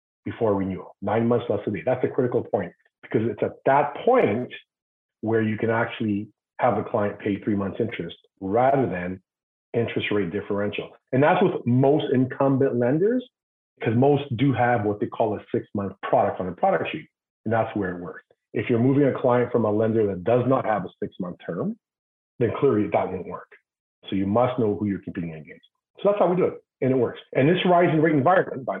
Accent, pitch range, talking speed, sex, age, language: American, 105-135 Hz, 210 wpm, male, 40-59, English